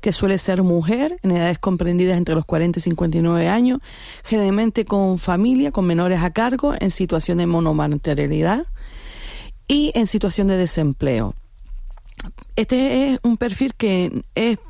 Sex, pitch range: female, 170-230 Hz